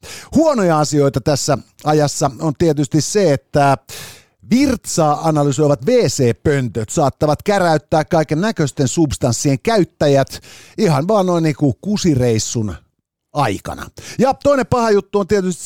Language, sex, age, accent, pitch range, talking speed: Finnish, male, 50-69, native, 130-190 Hz, 120 wpm